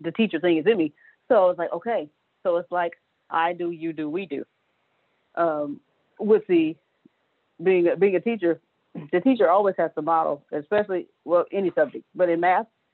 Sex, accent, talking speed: female, American, 185 wpm